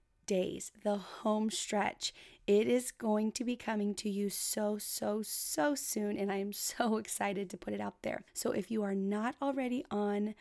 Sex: female